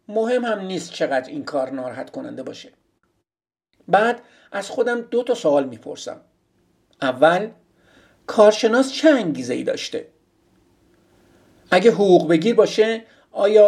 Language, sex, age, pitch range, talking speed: Persian, male, 50-69, 165-245 Hz, 115 wpm